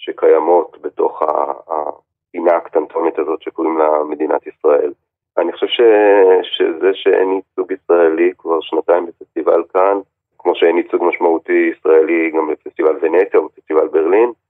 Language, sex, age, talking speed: Hebrew, male, 30-49, 120 wpm